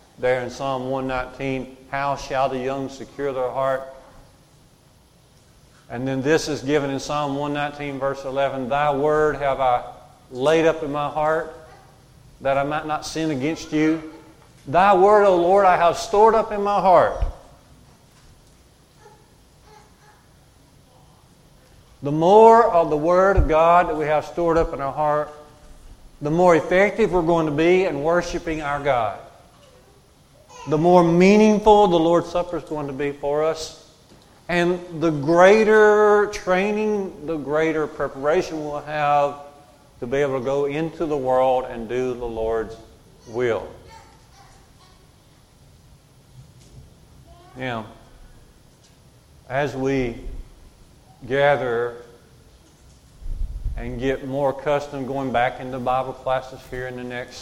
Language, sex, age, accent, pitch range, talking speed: English, male, 40-59, American, 130-160 Hz, 130 wpm